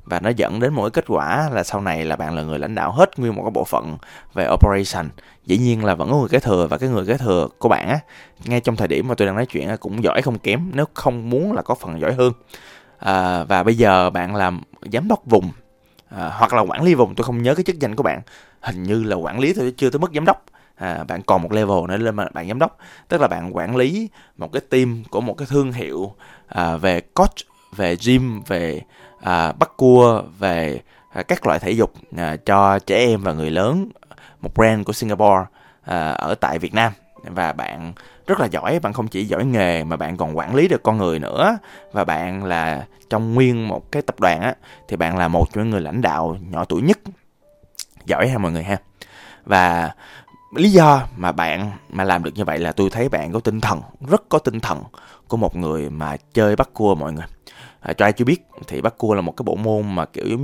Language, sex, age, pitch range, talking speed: Vietnamese, male, 20-39, 90-130 Hz, 240 wpm